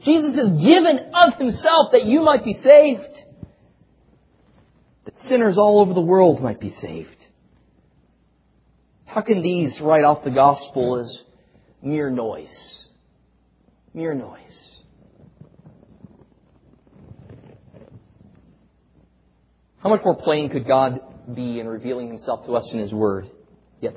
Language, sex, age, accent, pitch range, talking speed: English, male, 40-59, American, 120-180 Hz, 120 wpm